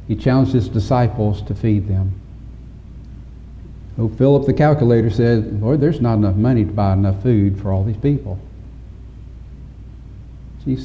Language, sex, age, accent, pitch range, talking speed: English, male, 60-79, American, 100-120 Hz, 145 wpm